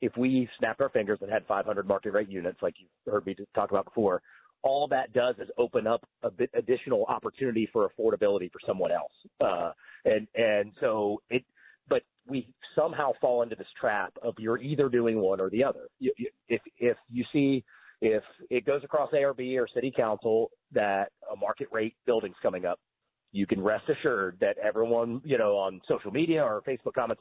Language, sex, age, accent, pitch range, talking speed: English, male, 40-59, American, 105-160 Hz, 190 wpm